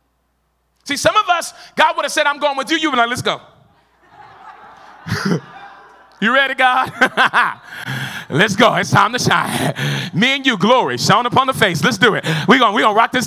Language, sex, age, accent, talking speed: English, male, 30-49, American, 200 wpm